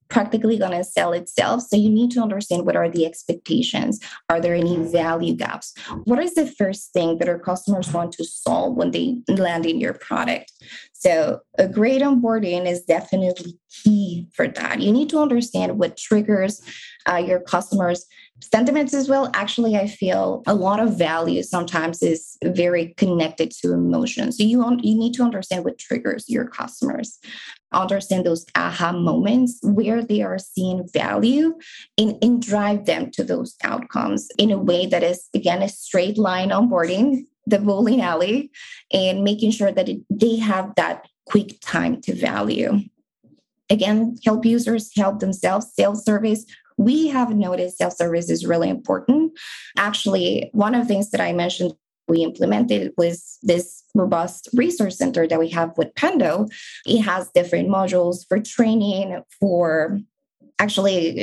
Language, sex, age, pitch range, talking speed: English, female, 20-39, 175-235 Hz, 160 wpm